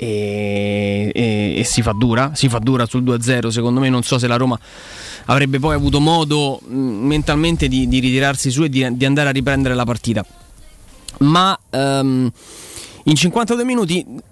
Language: Italian